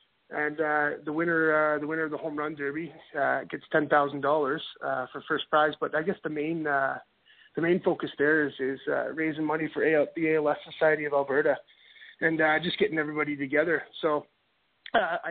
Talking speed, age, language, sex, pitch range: 200 wpm, 20-39, English, male, 150-165 Hz